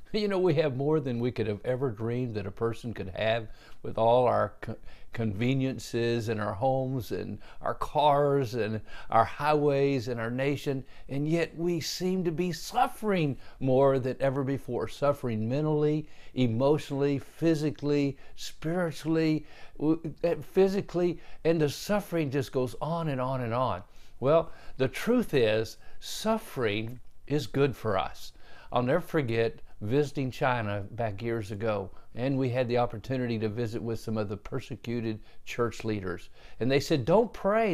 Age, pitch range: 50-69, 115-160 Hz